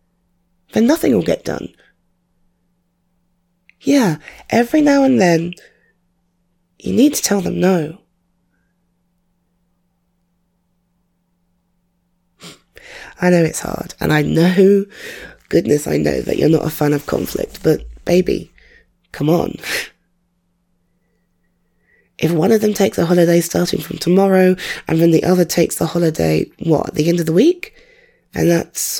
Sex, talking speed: female, 130 wpm